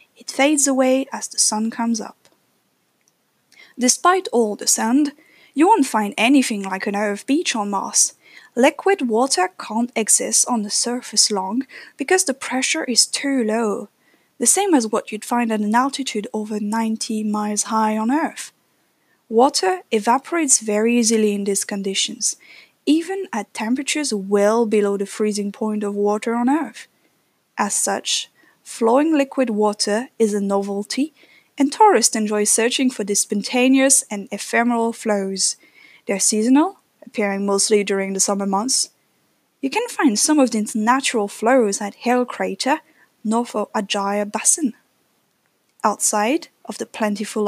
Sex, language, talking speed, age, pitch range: female, French, 145 wpm, 10-29, 210-270 Hz